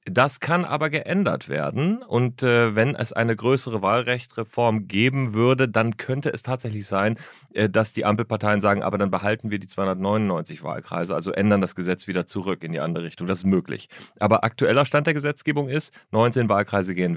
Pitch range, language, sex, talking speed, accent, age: 95-125 Hz, English, male, 185 wpm, German, 30-49